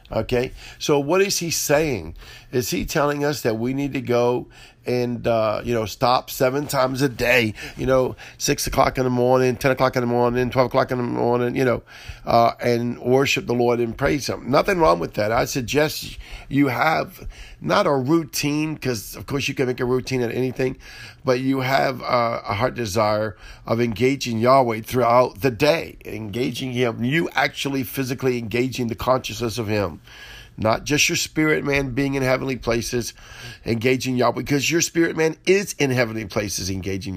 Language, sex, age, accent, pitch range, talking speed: English, male, 50-69, American, 115-135 Hz, 185 wpm